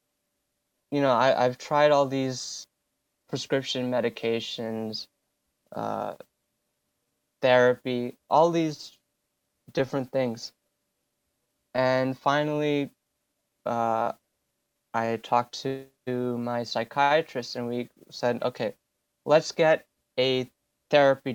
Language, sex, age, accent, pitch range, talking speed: English, male, 20-39, American, 120-145 Hz, 85 wpm